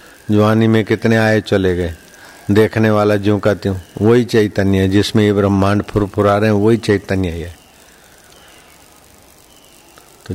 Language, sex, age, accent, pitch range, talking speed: Hindi, male, 50-69, native, 100-110 Hz, 145 wpm